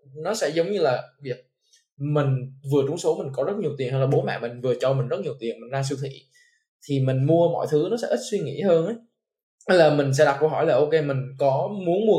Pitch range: 135-170 Hz